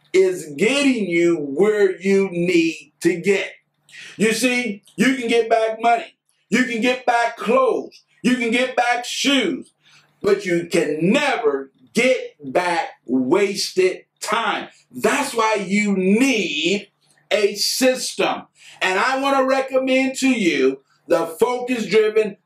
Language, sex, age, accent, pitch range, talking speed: English, male, 50-69, American, 190-255 Hz, 130 wpm